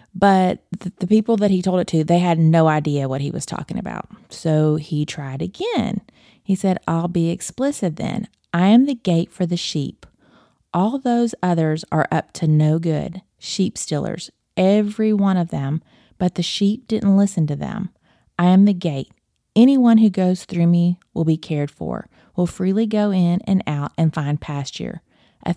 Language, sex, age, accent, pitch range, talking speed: English, female, 30-49, American, 160-200 Hz, 185 wpm